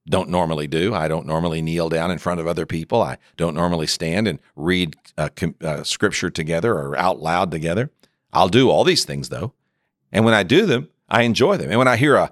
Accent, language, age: American, English, 50-69